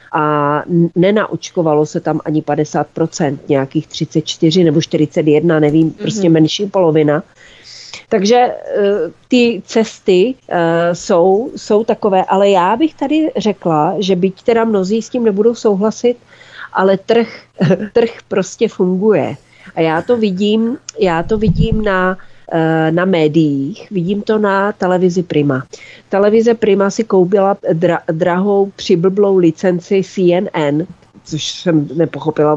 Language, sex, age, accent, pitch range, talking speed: Czech, female, 40-59, native, 155-210 Hz, 120 wpm